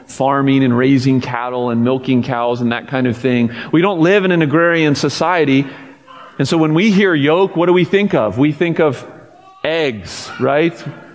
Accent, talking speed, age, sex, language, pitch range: American, 190 wpm, 40-59, male, English, 140-180 Hz